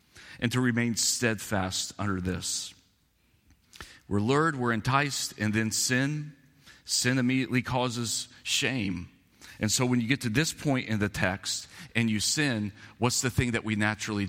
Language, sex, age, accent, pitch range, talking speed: English, male, 40-59, American, 95-120 Hz, 155 wpm